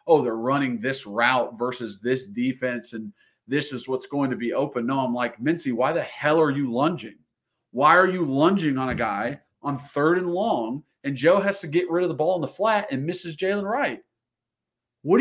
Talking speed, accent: 215 wpm, American